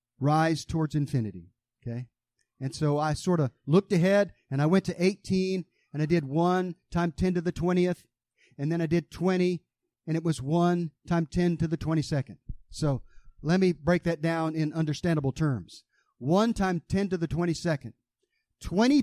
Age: 50-69